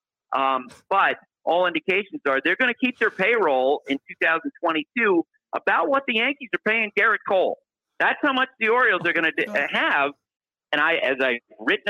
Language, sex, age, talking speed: English, male, 50-69, 180 wpm